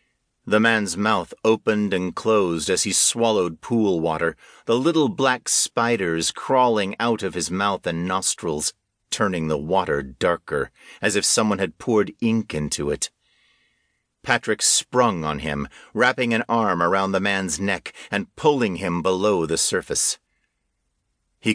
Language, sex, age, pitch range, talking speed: English, male, 50-69, 85-115 Hz, 145 wpm